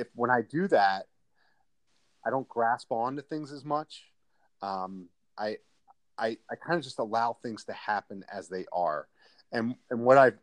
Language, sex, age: English, male, 30-49